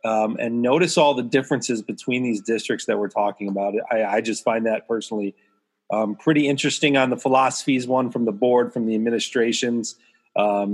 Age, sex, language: 30-49, male, English